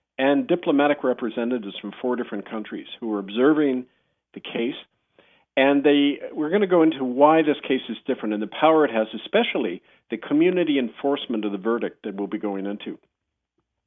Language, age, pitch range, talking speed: English, 50-69, 110-145 Hz, 175 wpm